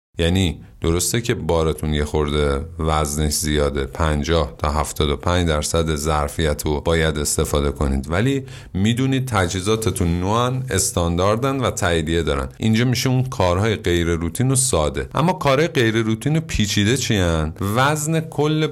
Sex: male